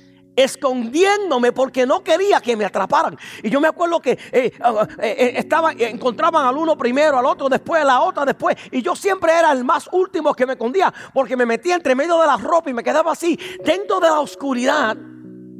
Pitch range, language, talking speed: 235-310 Hz, English, 205 wpm